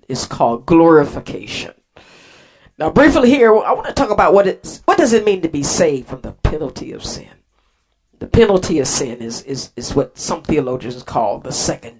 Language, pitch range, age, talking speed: English, 145-190 Hz, 50-69, 190 wpm